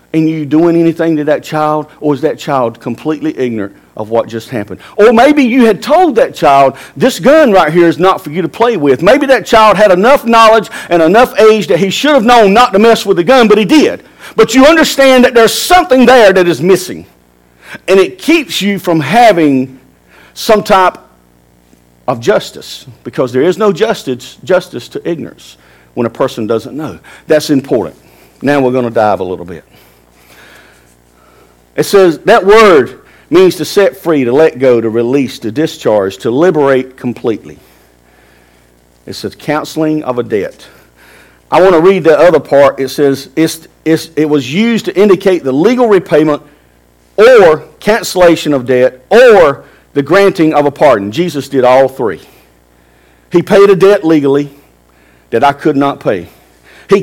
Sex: male